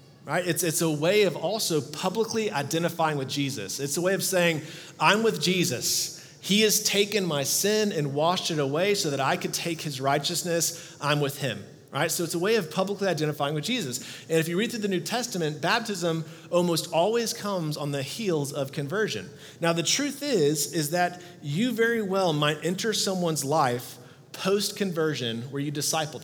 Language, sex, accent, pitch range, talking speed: English, male, American, 140-185 Hz, 190 wpm